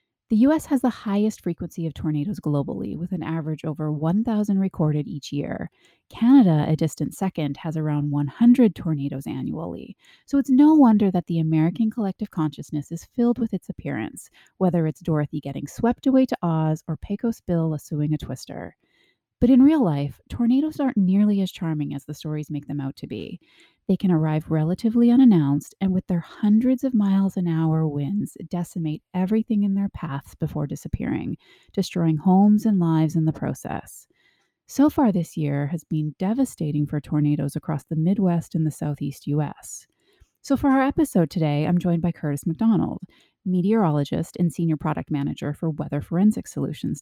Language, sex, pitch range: English, female, 155-215 Hz